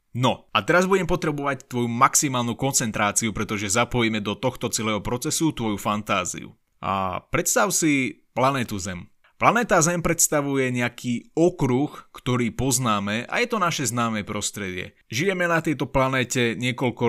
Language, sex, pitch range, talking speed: Slovak, male, 110-150 Hz, 135 wpm